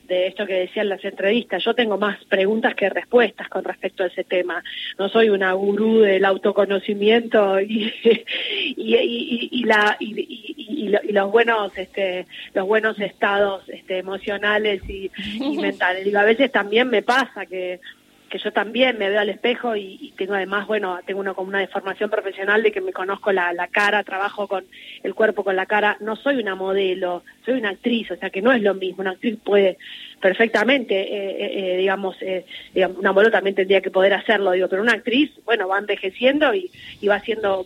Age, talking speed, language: 20-39, 200 wpm, Spanish